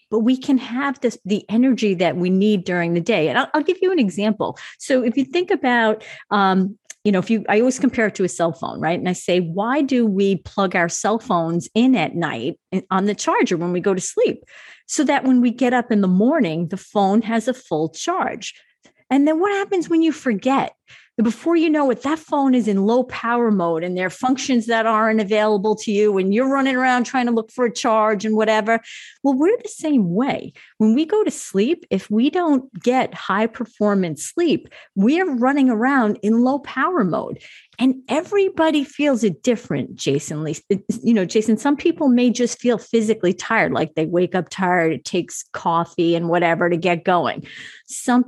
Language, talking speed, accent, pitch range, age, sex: English, 210 wpm, American, 195-265 Hz, 40-59, female